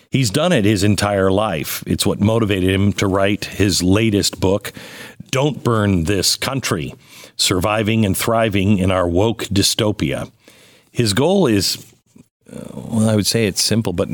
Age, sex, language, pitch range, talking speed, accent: 50-69, male, English, 95-120 Hz, 155 wpm, American